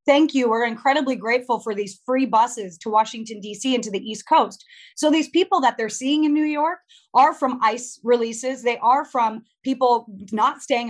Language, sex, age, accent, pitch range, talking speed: English, female, 30-49, American, 220-260 Hz, 200 wpm